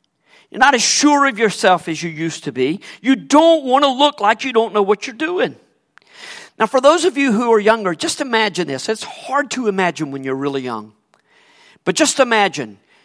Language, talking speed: English, 200 wpm